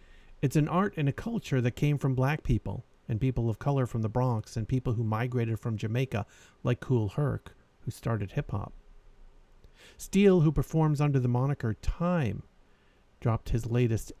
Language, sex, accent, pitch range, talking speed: English, male, American, 110-135 Hz, 170 wpm